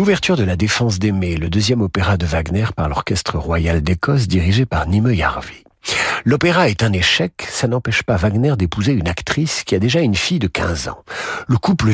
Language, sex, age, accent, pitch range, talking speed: French, male, 50-69, French, 95-130 Hz, 195 wpm